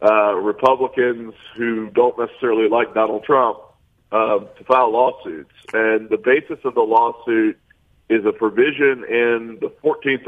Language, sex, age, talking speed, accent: English, male, 50-69, 140 wpm, American